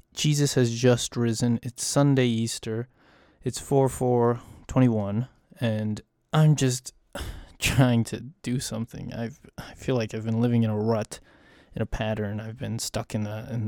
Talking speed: 165 wpm